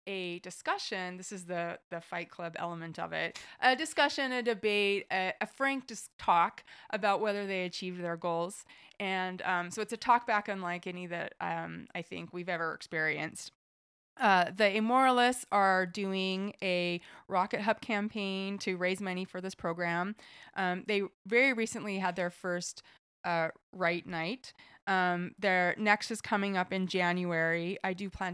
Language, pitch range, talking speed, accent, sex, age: English, 170-200 Hz, 165 wpm, American, female, 30-49